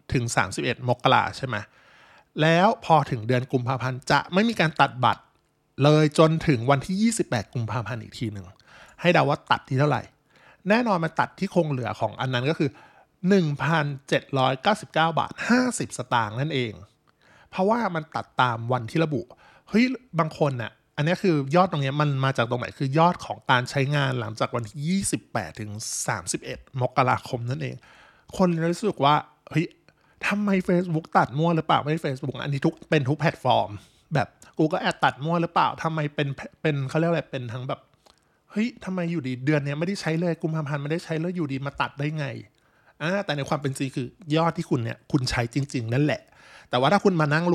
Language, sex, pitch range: Thai, male, 125-165 Hz